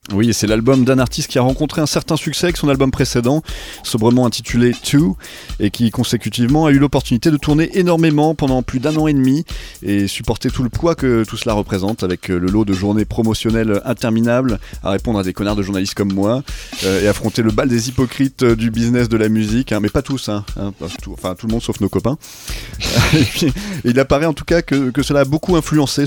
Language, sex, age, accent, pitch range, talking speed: French, male, 30-49, French, 110-140 Hz, 220 wpm